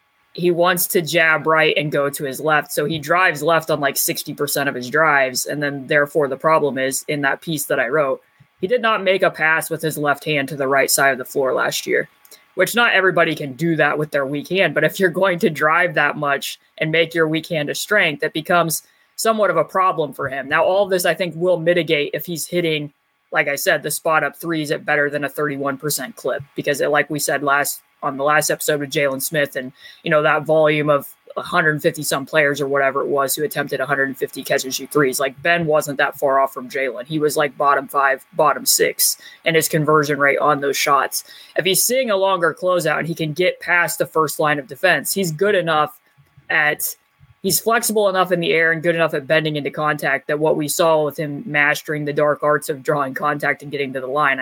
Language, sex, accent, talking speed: English, female, American, 240 wpm